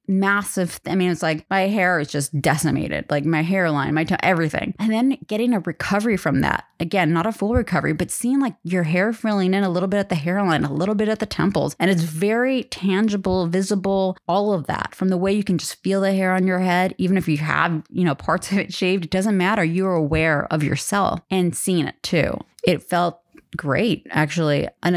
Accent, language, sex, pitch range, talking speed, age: American, English, female, 160-195 Hz, 225 wpm, 20-39